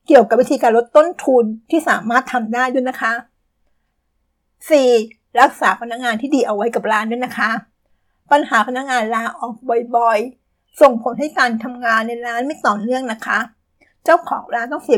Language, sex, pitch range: Thai, female, 230-265 Hz